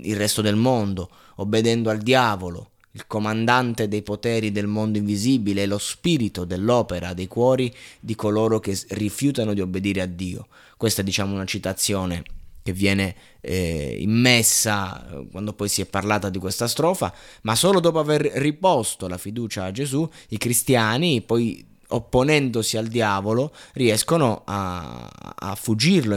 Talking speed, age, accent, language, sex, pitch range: 145 wpm, 20-39, native, Italian, male, 100-120 Hz